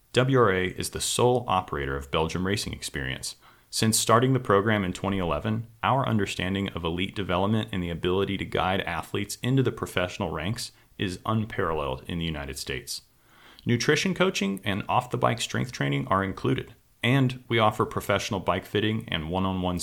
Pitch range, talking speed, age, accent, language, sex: 90-115 Hz, 155 wpm, 30-49, American, English, male